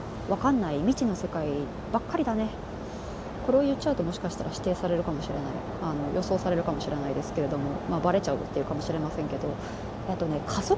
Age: 30-49